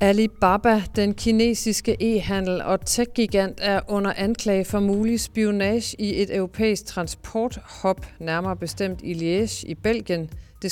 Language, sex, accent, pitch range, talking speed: Danish, female, native, 155-205 Hz, 130 wpm